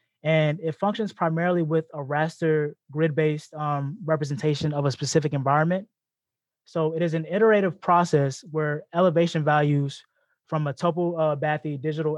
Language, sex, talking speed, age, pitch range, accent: English, male, 135 wpm, 20-39, 145-165 Hz, American